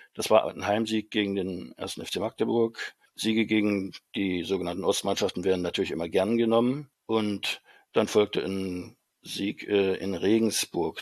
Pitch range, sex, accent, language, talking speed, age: 100-115 Hz, male, German, German, 140 wpm, 60-79